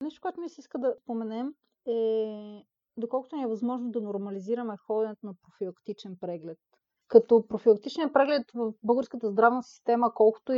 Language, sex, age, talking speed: Bulgarian, female, 30-49, 145 wpm